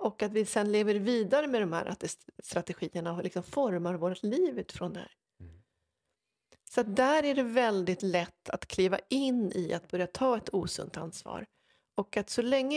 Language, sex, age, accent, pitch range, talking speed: Swedish, female, 40-59, native, 175-215 Hz, 180 wpm